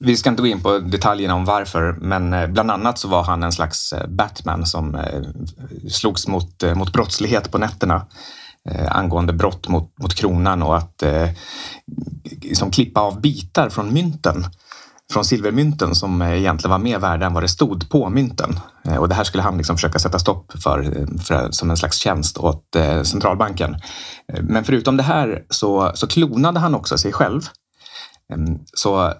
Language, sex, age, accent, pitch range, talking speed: Swedish, male, 30-49, native, 85-115 Hz, 160 wpm